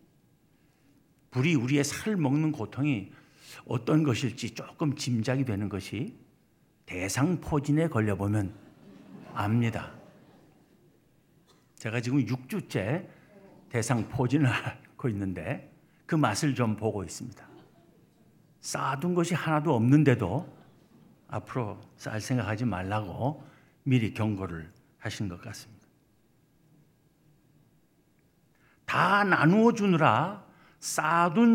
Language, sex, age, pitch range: Korean, male, 60-79, 115-155 Hz